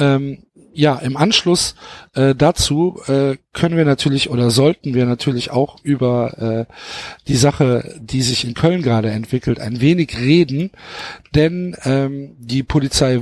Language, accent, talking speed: German, German, 145 wpm